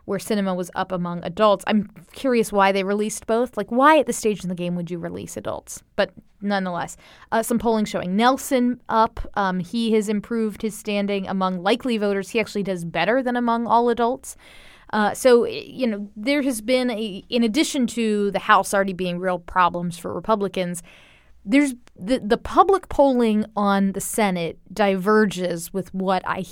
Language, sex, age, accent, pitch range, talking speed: English, female, 20-39, American, 185-235 Hz, 180 wpm